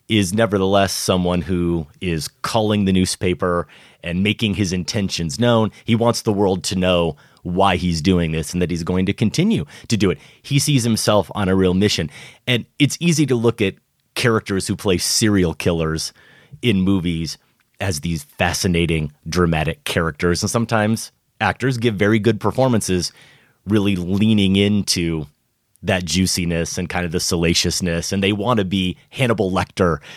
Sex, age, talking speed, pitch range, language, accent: male, 30-49, 160 wpm, 90-120 Hz, English, American